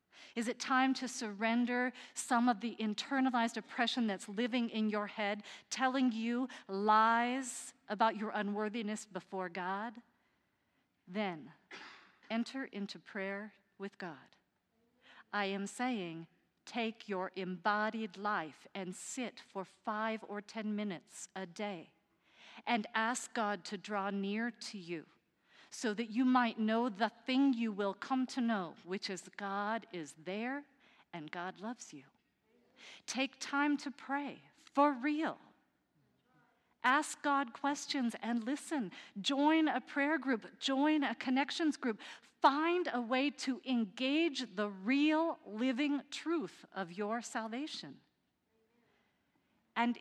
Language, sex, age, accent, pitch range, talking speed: English, female, 40-59, American, 205-265 Hz, 125 wpm